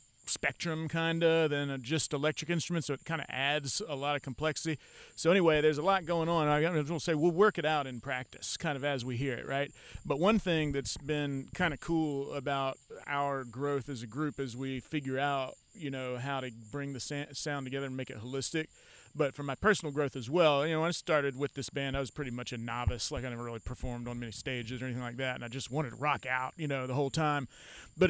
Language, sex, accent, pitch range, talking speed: English, male, American, 135-165 Hz, 245 wpm